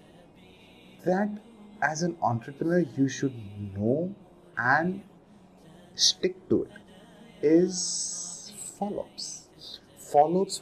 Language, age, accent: English, 30-49, Indian